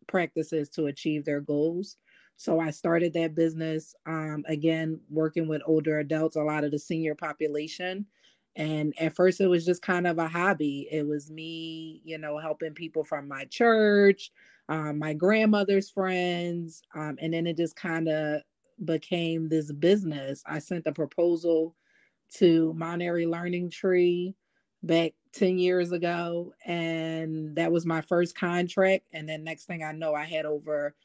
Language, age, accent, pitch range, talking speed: English, 30-49, American, 155-175 Hz, 160 wpm